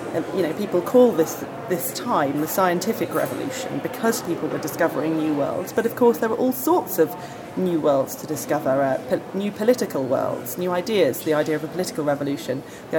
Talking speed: 190 wpm